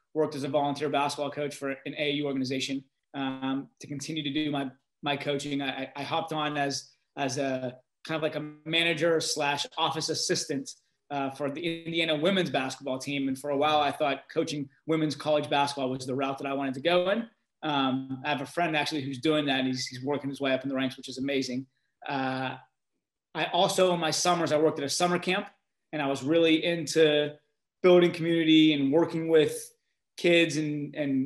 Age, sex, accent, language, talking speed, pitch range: 30-49, male, American, English, 205 wpm, 140-160 Hz